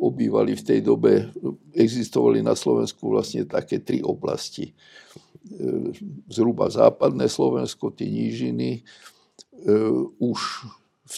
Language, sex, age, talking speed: Slovak, male, 60-79, 95 wpm